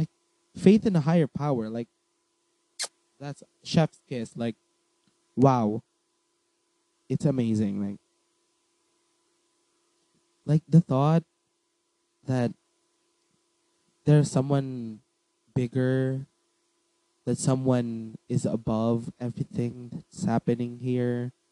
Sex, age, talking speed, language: male, 20-39, 80 wpm, Filipino